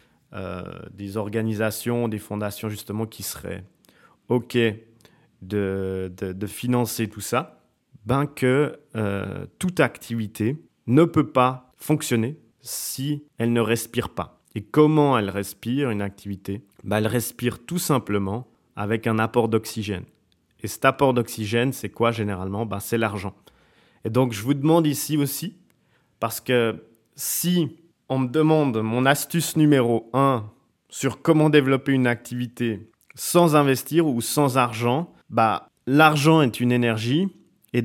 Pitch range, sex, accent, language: 110-135 Hz, male, French, French